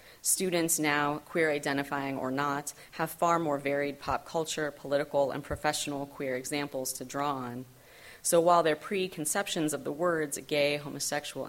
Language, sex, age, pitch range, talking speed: English, female, 30-49, 140-160 Hz, 145 wpm